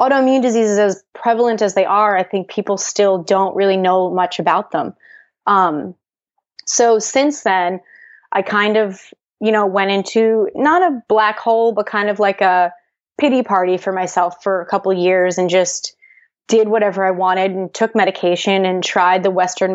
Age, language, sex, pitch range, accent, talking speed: 20-39, English, female, 180-215 Hz, American, 180 wpm